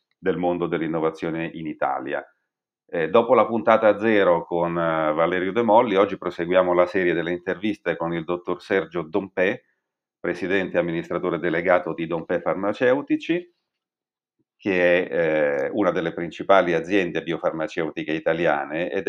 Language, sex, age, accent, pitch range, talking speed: Italian, male, 40-59, native, 85-120 Hz, 135 wpm